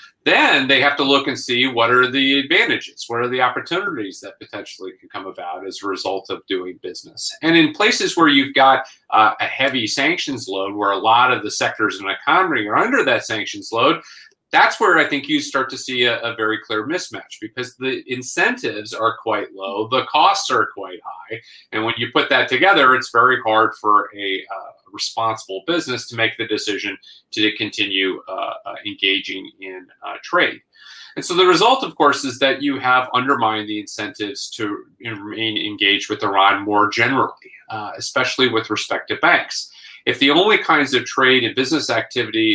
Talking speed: 190 wpm